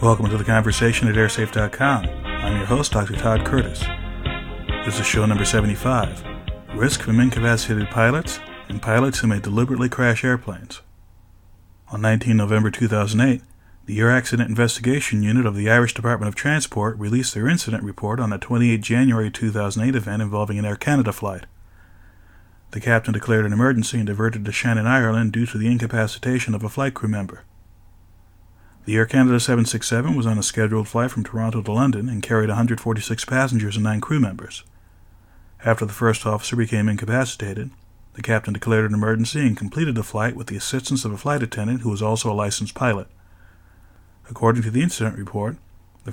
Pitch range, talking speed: 105-120 Hz, 170 wpm